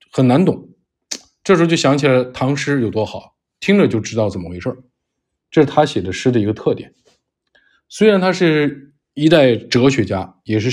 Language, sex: Chinese, male